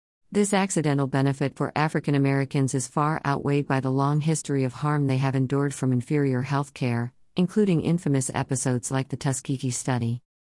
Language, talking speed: English, 165 wpm